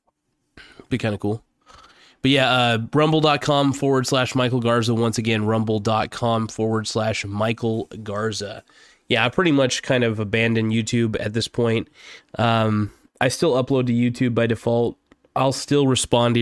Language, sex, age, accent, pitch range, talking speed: English, male, 20-39, American, 110-135 Hz, 155 wpm